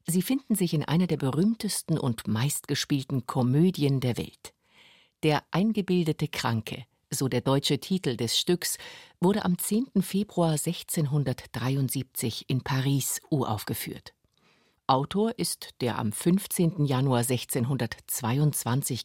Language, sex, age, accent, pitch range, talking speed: German, female, 50-69, German, 125-170 Hz, 115 wpm